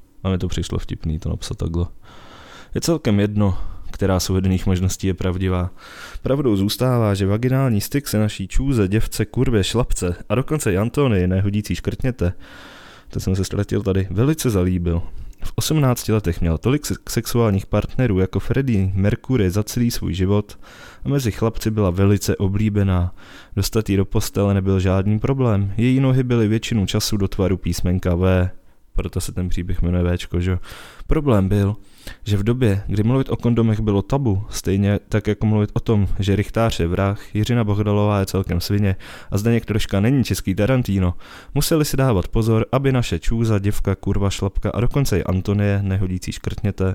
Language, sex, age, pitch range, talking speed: Czech, male, 20-39, 95-115 Hz, 165 wpm